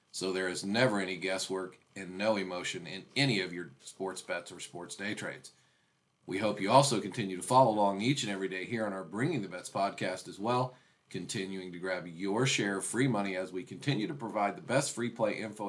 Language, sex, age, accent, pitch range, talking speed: English, male, 40-59, American, 95-115 Hz, 220 wpm